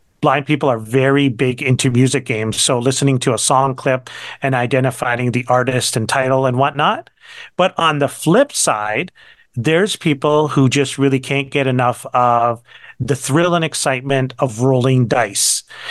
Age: 40-59